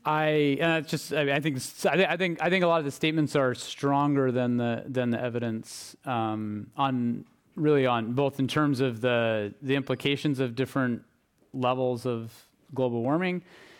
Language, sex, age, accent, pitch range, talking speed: English, male, 30-49, American, 115-140 Hz, 180 wpm